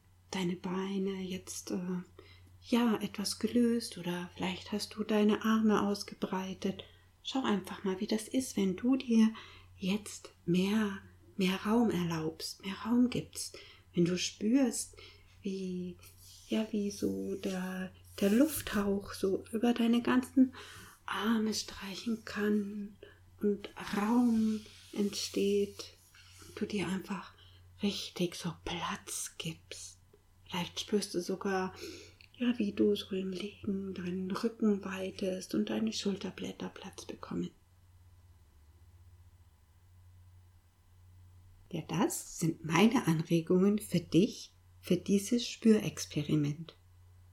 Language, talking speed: German, 110 wpm